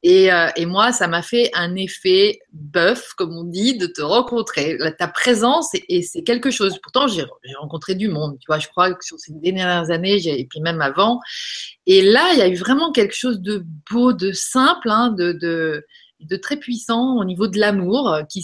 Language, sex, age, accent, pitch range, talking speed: French, female, 30-49, French, 160-225 Hz, 215 wpm